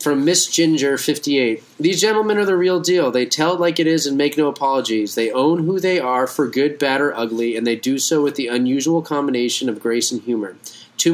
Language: English